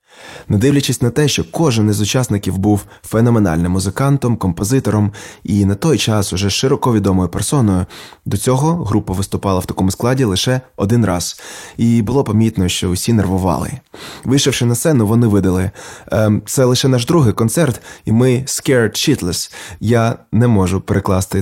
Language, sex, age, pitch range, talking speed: Ukrainian, male, 20-39, 100-120 Hz, 155 wpm